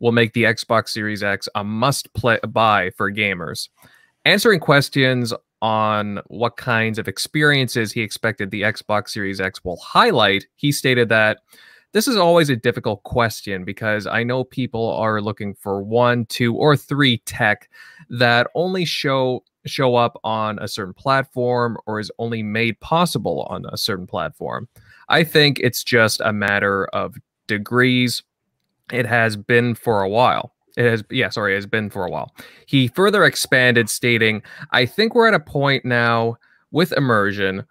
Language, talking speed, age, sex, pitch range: English, 165 wpm, 20-39, male, 105-130 Hz